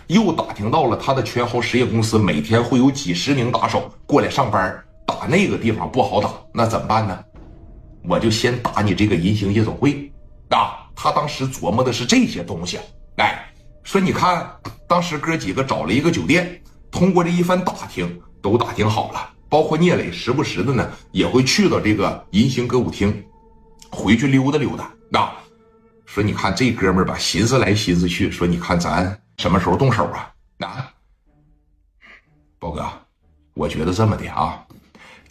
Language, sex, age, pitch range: Chinese, male, 60-79, 90-125 Hz